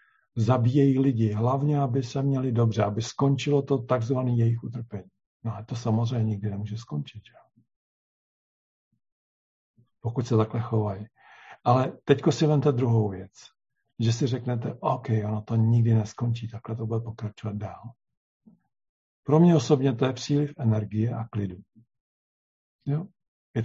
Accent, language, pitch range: native, Czech, 110-130 Hz